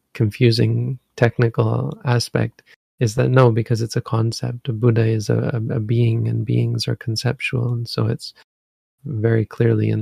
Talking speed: 155 wpm